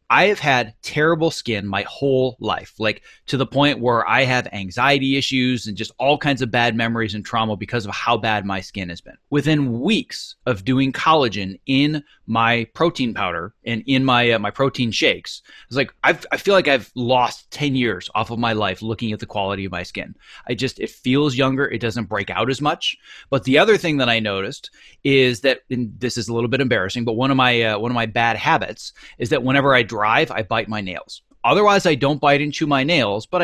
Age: 30-49